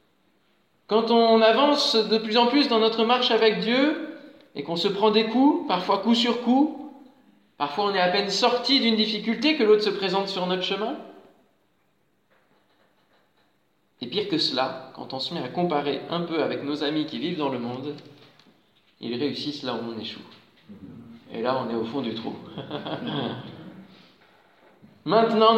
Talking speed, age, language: 170 wpm, 20-39, French